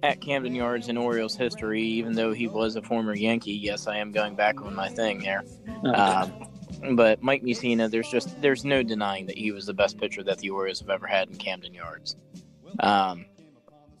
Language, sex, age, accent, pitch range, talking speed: English, male, 20-39, American, 105-125 Hz, 200 wpm